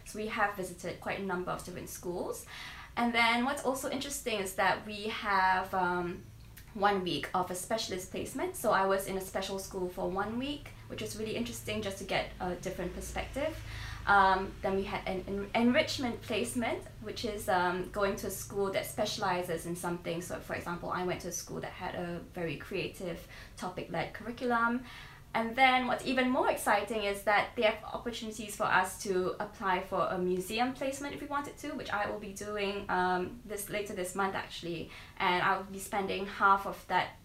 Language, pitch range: English, 180-215 Hz